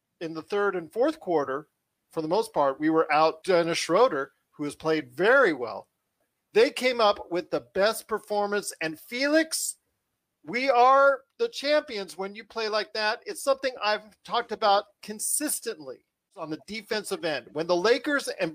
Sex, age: male, 40-59